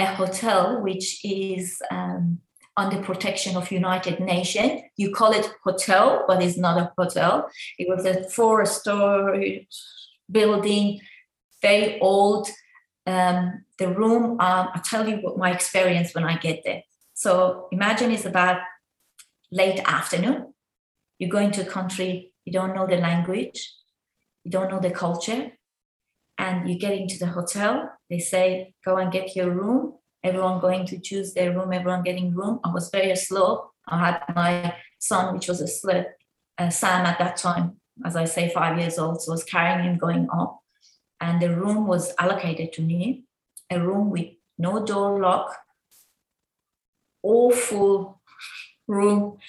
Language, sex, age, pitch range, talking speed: English, female, 20-39, 180-205 Hz, 155 wpm